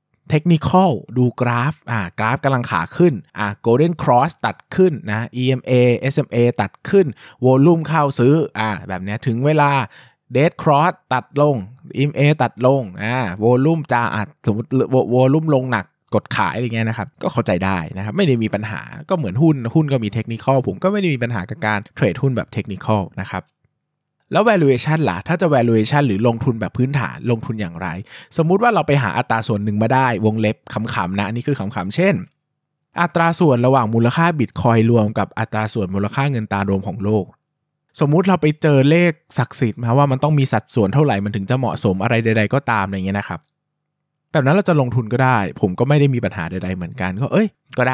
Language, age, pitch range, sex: Thai, 20-39, 110-150 Hz, male